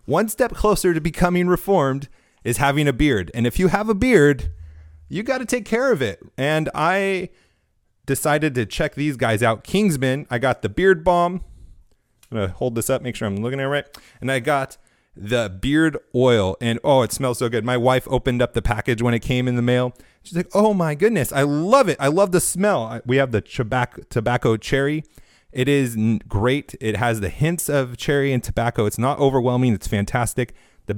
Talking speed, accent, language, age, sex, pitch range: 205 wpm, American, English, 30-49, male, 115-160 Hz